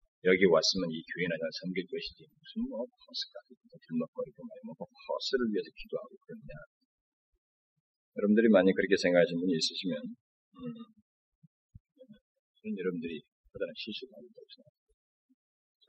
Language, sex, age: Korean, male, 30-49